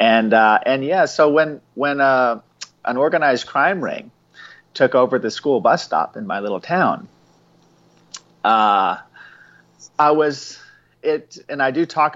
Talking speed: 150 wpm